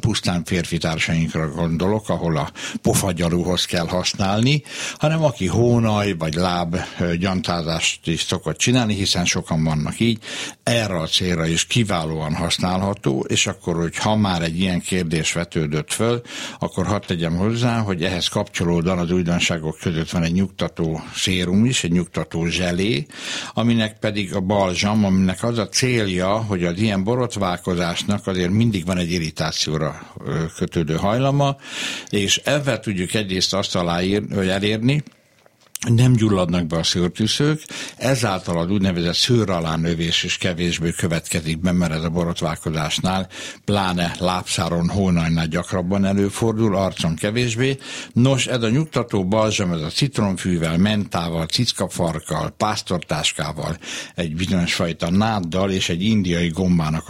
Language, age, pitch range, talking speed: Hungarian, 60-79, 85-105 Hz, 130 wpm